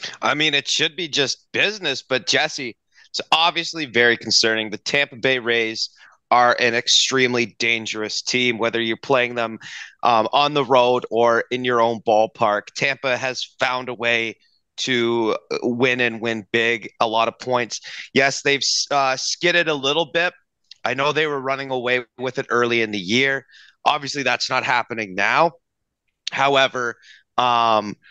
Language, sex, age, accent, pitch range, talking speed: English, male, 30-49, American, 115-145 Hz, 160 wpm